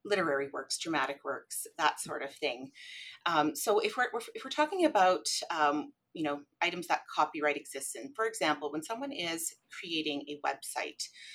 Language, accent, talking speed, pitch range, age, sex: English, American, 170 wpm, 145-225 Hz, 30-49, female